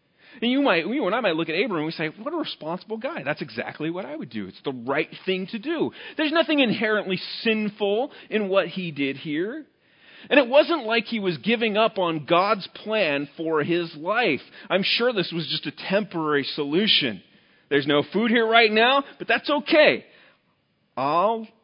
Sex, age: male, 40-59